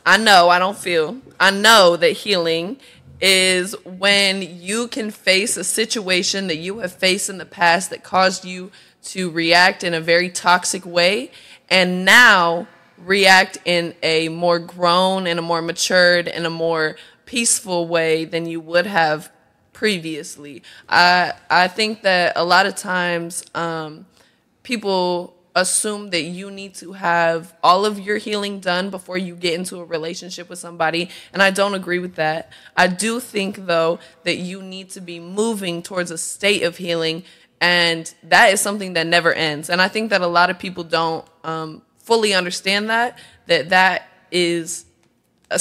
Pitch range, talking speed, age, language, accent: 170-195 Hz, 170 wpm, 20-39, English, American